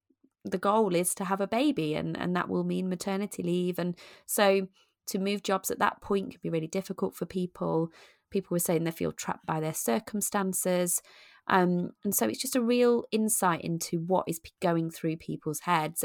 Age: 30-49